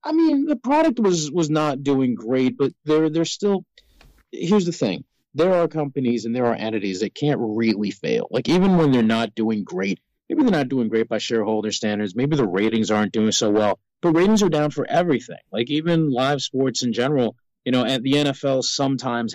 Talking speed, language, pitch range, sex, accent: 210 wpm, English, 110-140 Hz, male, American